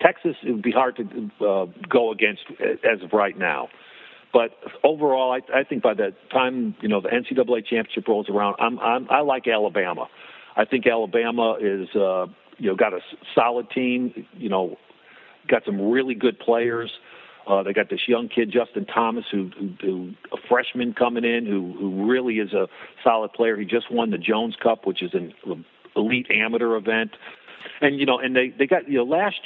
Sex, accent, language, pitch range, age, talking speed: male, American, English, 110-130 Hz, 50-69, 195 wpm